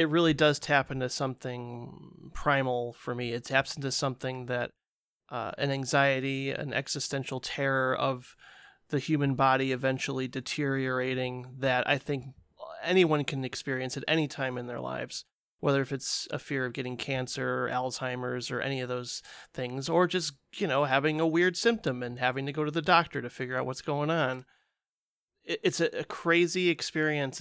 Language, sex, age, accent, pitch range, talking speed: English, male, 30-49, American, 130-155 Hz, 170 wpm